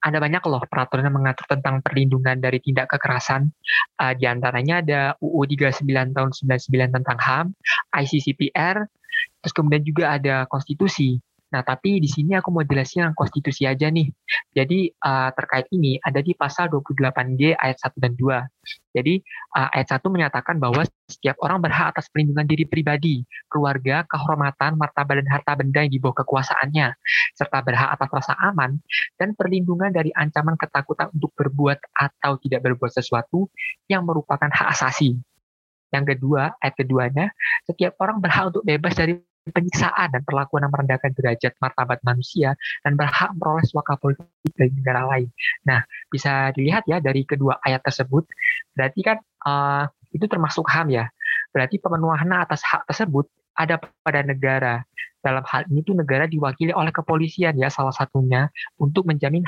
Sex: male